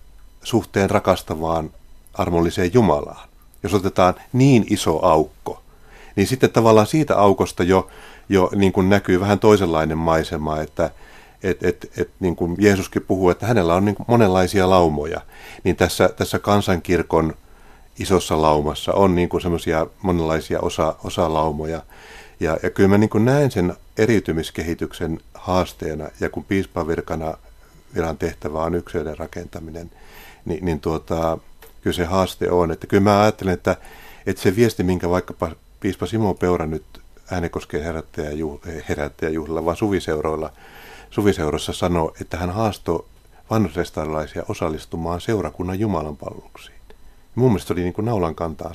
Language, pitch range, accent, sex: Finnish, 80-100 Hz, native, male